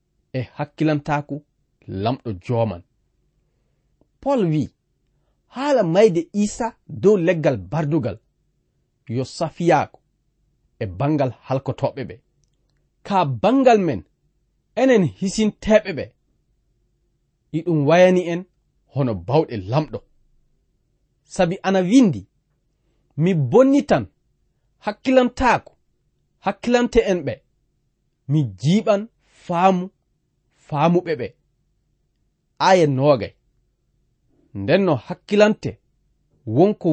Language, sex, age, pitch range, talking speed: English, male, 40-59, 130-195 Hz, 80 wpm